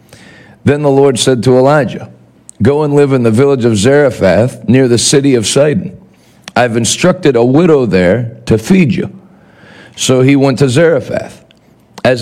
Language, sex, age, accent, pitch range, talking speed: English, male, 50-69, American, 120-145 Hz, 160 wpm